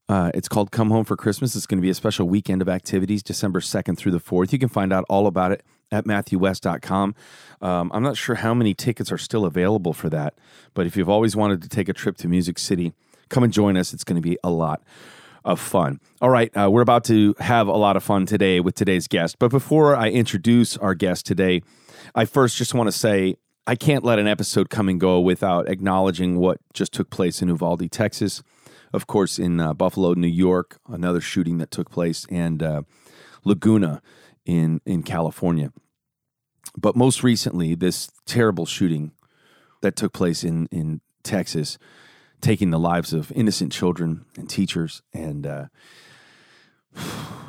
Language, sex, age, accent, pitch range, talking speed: English, male, 30-49, American, 85-110 Hz, 190 wpm